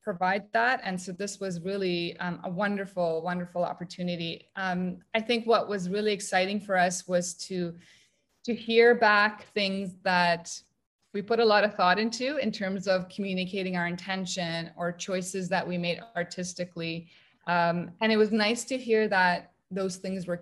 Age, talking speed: 20-39, 170 wpm